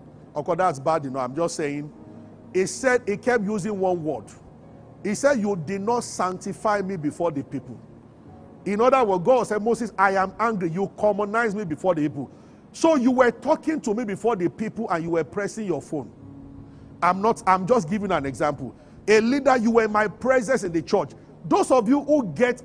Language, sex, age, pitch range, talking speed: English, male, 40-59, 180-250 Hz, 200 wpm